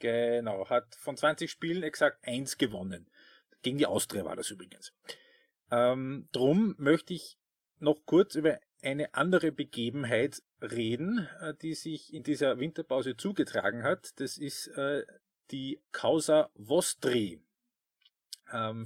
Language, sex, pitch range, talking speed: German, male, 120-165 Hz, 125 wpm